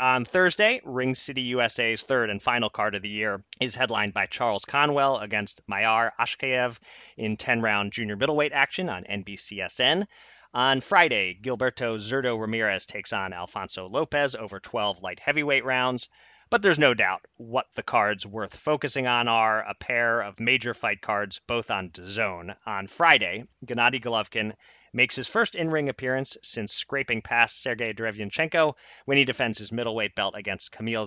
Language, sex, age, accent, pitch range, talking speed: English, male, 30-49, American, 105-140 Hz, 160 wpm